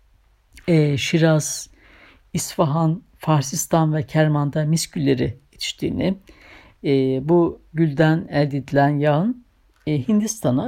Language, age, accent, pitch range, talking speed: Turkish, 60-79, native, 135-175 Hz, 80 wpm